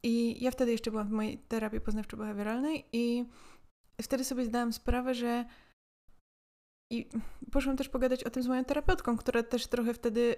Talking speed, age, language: 160 wpm, 20-39, Polish